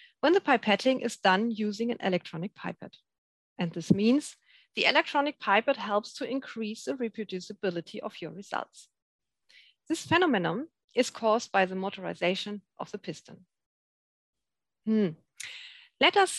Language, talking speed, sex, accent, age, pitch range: English, 130 wpm, female, German, 40-59, 195-265 Hz